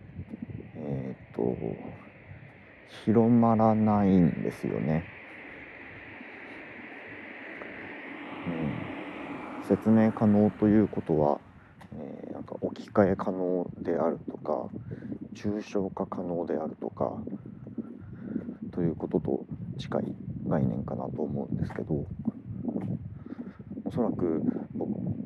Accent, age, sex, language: native, 40-59, male, Japanese